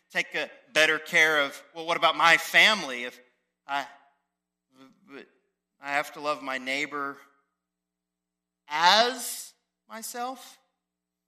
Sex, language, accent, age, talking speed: male, English, American, 40-59, 105 wpm